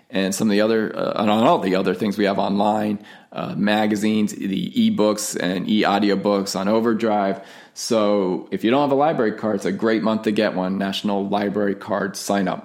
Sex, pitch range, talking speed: male, 105-125 Hz, 200 wpm